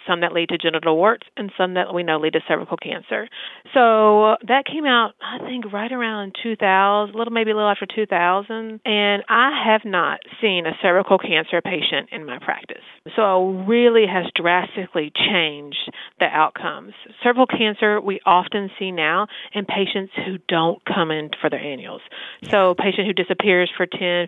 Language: English